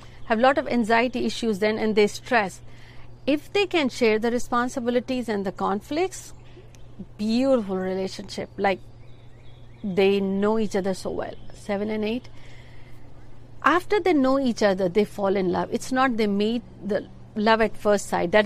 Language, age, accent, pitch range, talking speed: Hindi, 50-69, native, 190-245 Hz, 160 wpm